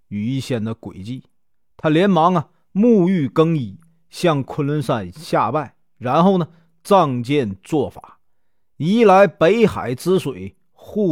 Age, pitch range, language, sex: 40-59, 125-190 Hz, Chinese, male